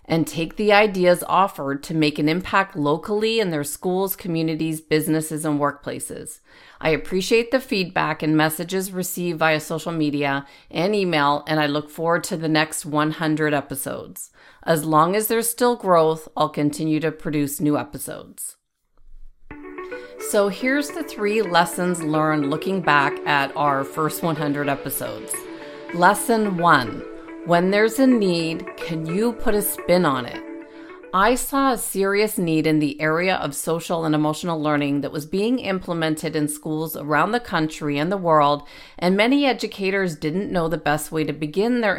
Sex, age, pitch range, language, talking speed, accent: female, 40-59, 150-190 Hz, English, 160 wpm, American